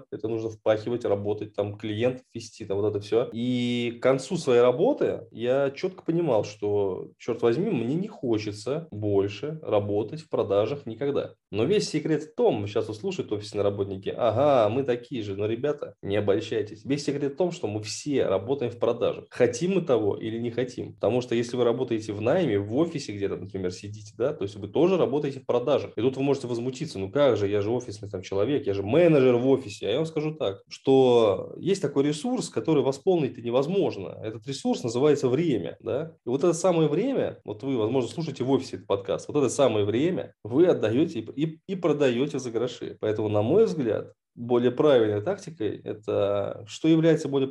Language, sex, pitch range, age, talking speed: Russian, male, 110-150 Hz, 20-39, 195 wpm